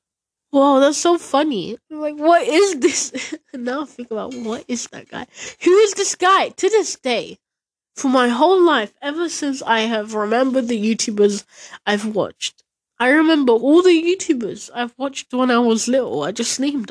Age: 10-29